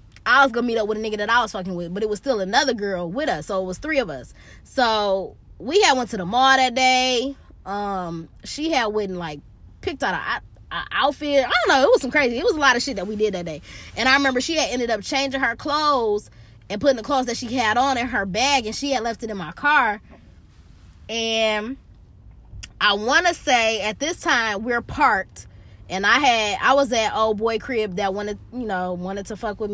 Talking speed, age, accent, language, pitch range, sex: 240 wpm, 20-39, American, English, 190-260 Hz, female